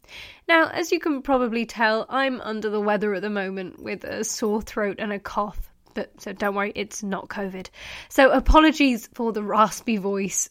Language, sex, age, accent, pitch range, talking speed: English, female, 20-39, British, 205-275 Hz, 185 wpm